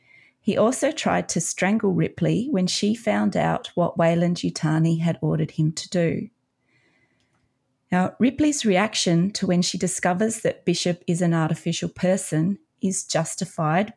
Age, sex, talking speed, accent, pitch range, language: 30-49, female, 140 wpm, Australian, 170-210 Hz, English